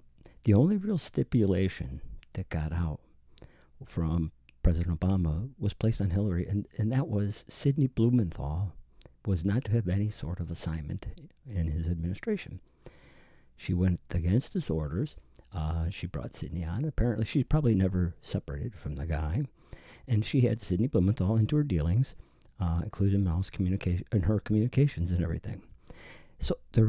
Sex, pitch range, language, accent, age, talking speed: male, 85-115 Hz, English, American, 50-69, 145 wpm